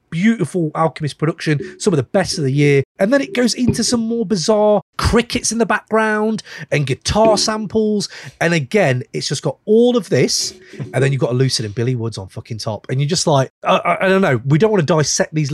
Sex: male